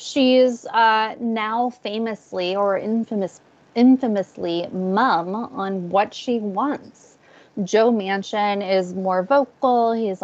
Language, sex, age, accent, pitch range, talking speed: English, female, 20-39, American, 195-240 Hz, 105 wpm